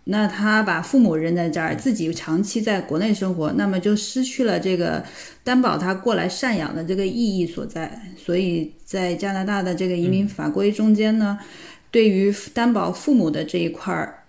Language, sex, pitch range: Chinese, female, 175-215 Hz